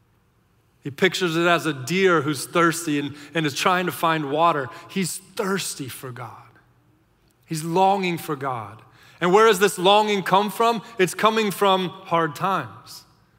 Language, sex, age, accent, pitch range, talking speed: English, male, 30-49, American, 135-170 Hz, 155 wpm